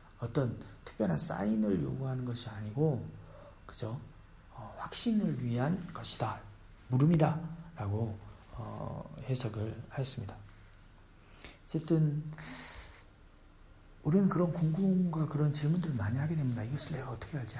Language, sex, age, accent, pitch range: Korean, male, 40-59, native, 105-155 Hz